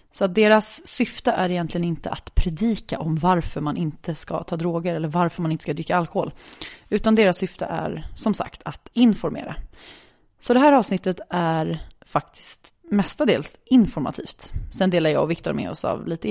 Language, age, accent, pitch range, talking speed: English, 30-49, Swedish, 170-215 Hz, 175 wpm